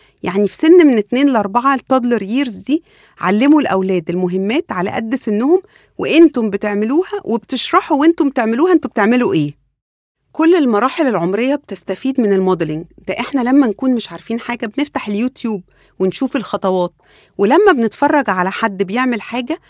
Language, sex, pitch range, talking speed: English, female, 190-260 Hz, 145 wpm